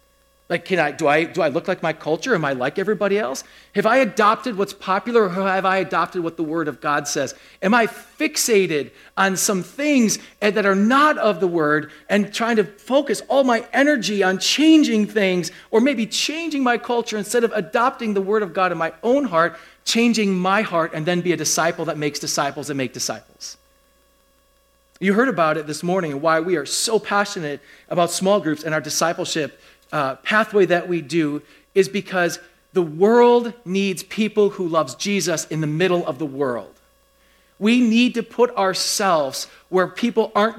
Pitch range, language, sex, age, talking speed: 165-230 Hz, English, male, 40-59, 190 wpm